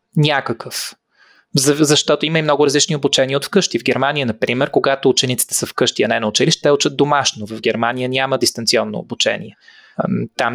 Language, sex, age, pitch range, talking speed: Bulgarian, male, 20-39, 130-170 Hz, 170 wpm